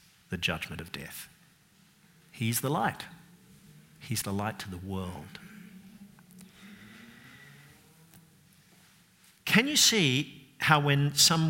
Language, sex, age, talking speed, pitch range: English, male, 50-69, 100 wpm, 115-165 Hz